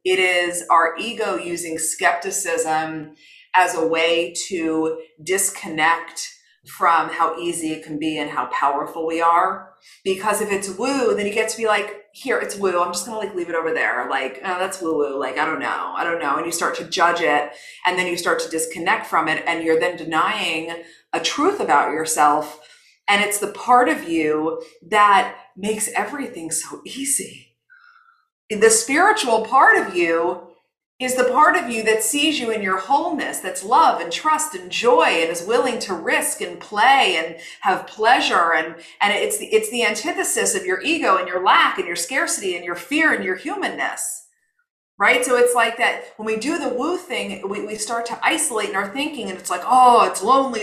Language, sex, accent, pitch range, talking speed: English, female, American, 165-250 Hz, 200 wpm